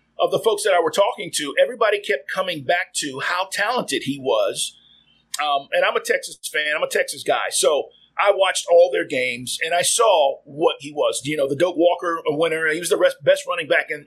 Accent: American